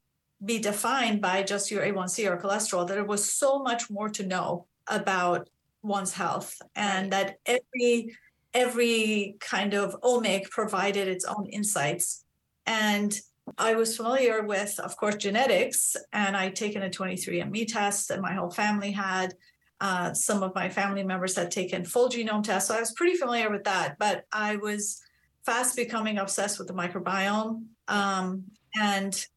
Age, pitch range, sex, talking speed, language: 40-59, 190-215 Hz, female, 160 wpm, English